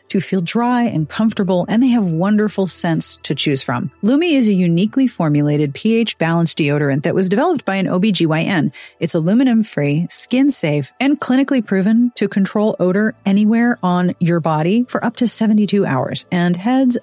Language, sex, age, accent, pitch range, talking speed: English, female, 40-59, American, 170-225 Hz, 175 wpm